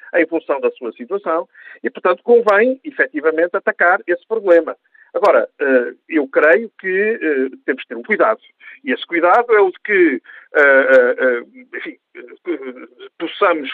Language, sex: Portuguese, male